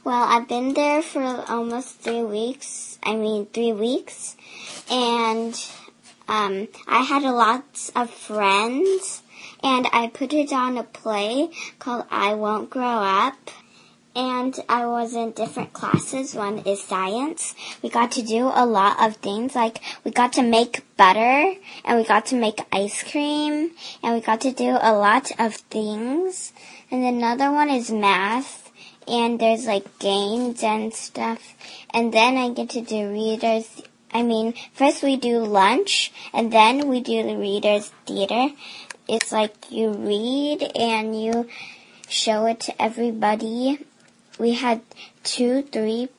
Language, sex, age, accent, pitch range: Chinese, male, 20-39, American, 220-255 Hz